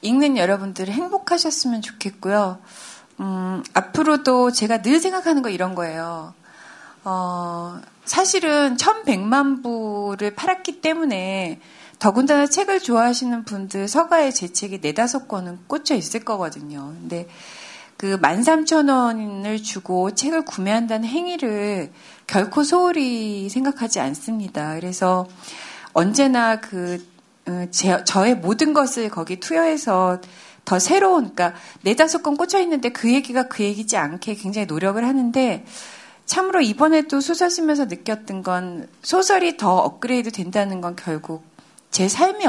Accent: native